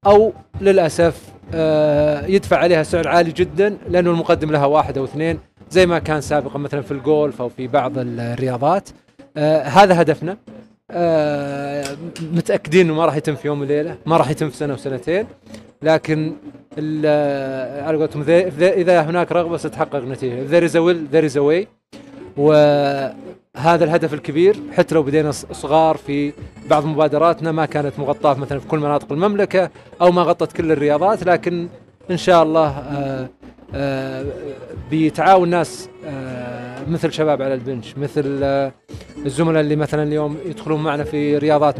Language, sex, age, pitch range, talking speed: Arabic, male, 30-49, 140-165 Hz, 140 wpm